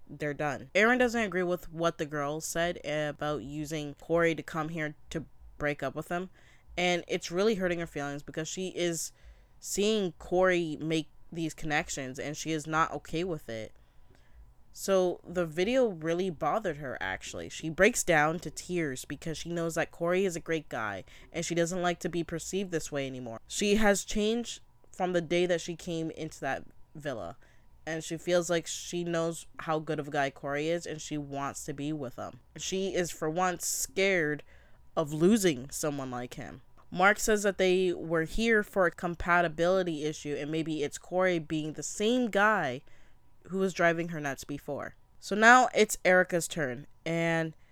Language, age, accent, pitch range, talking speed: English, 20-39, American, 150-185 Hz, 180 wpm